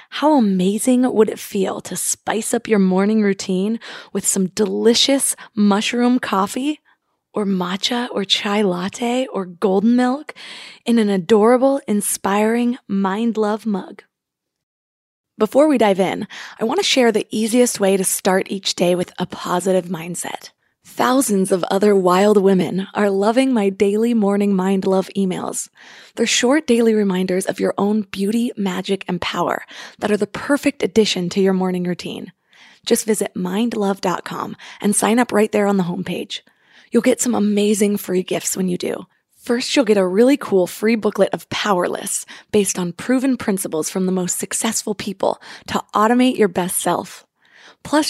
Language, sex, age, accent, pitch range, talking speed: English, female, 20-39, American, 190-230 Hz, 160 wpm